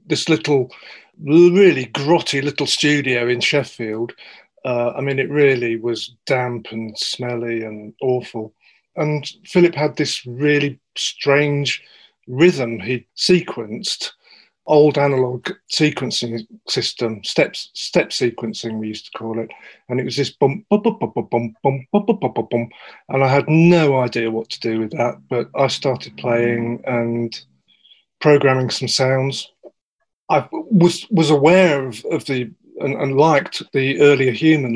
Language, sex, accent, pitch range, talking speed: English, male, British, 120-145 Hz, 145 wpm